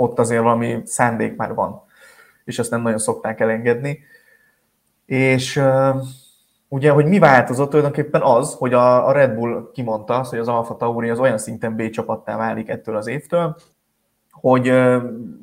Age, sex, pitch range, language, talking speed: 20-39, male, 115-140 Hz, Hungarian, 150 wpm